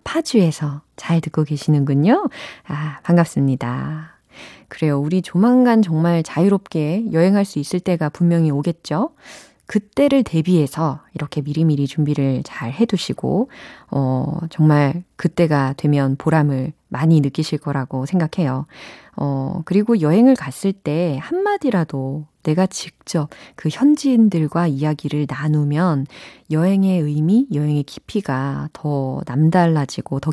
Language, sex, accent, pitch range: Korean, female, native, 150-230 Hz